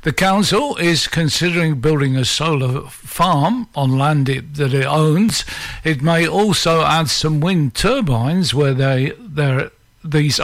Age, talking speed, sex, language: 60-79, 140 wpm, male, English